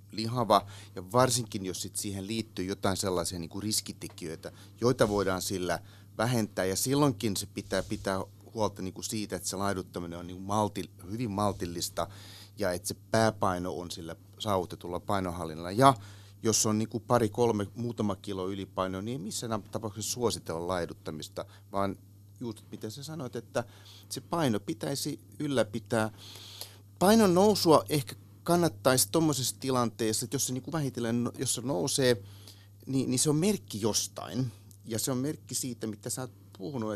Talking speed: 155 wpm